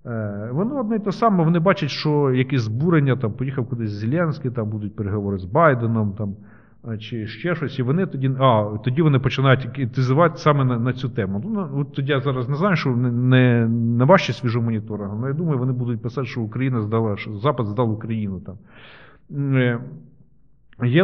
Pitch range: 110-145 Hz